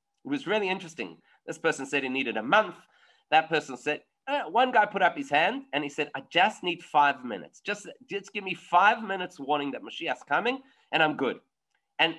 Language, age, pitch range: English, 30-49, 155-240 Hz